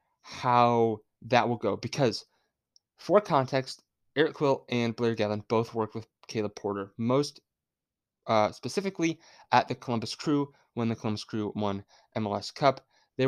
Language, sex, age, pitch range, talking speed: English, male, 20-39, 105-135 Hz, 145 wpm